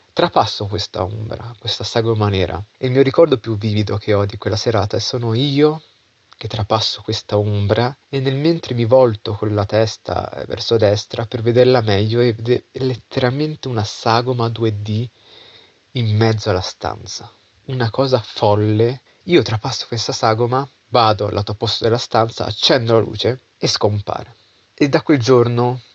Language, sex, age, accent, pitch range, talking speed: Italian, male, 30-49, native, 105-125 Hz, 160 wpm